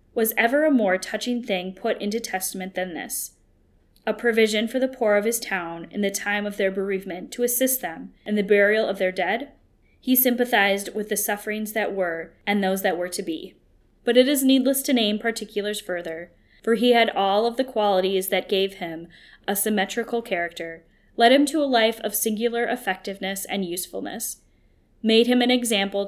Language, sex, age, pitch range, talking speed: English, female, 10-29, 185-230 Hz, 190 wpm